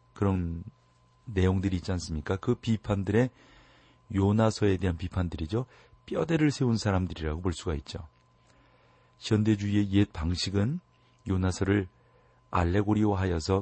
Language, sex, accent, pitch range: Korean, male, native, 80-105 Hz